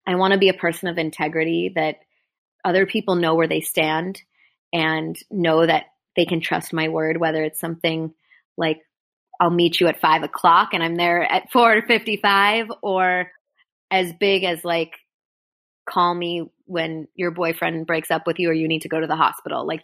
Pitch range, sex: 160-195 Hz, female